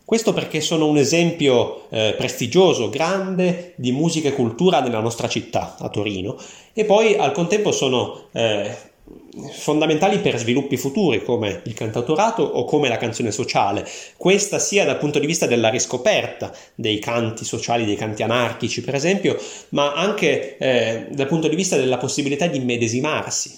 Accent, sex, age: native, male, 30-49